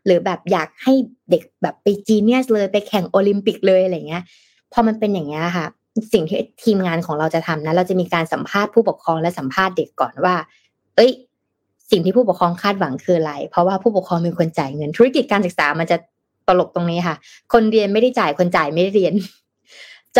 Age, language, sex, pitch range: 20-39, Thai, female, 175-225 Hz